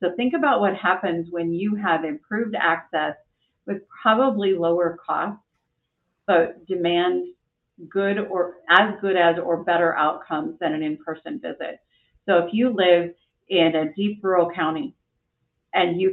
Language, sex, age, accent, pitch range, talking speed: English, female, 40-59, American, 160-185 Hz, 150 wpm